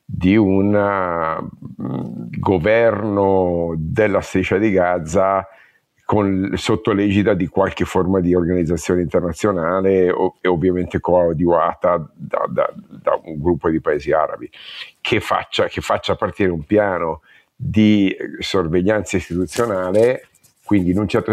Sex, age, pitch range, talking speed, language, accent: male, 50-69, 90-105 Hz, 105 wpm, Italian, native